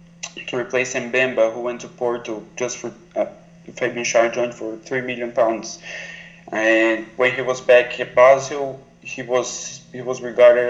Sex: male